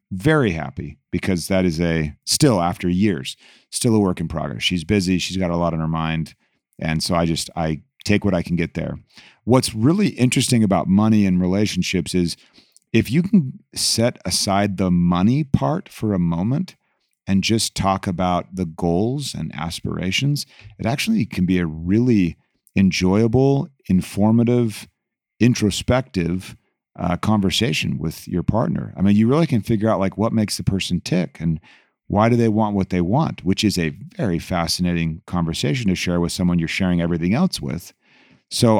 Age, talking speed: 40-59, 175 wpm